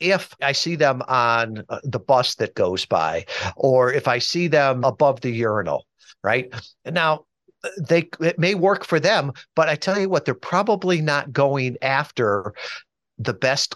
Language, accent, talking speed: English, American, 170 wpm